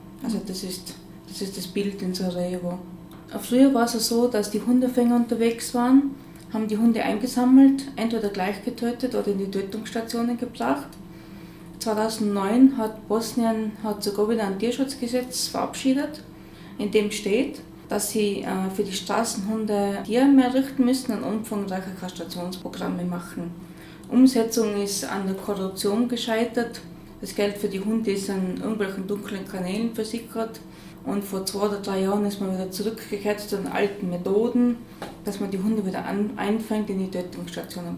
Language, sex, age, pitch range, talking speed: German, female, 20-39, 190-225 Hz, 150 wpm